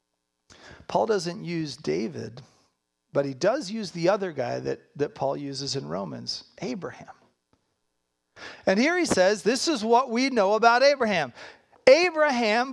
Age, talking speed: 40-59, 140 wpm